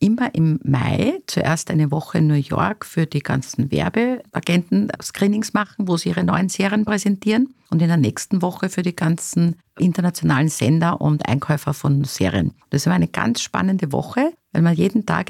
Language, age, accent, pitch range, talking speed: German, 50-69, Austrian, 145-190 Hz, 175 wpm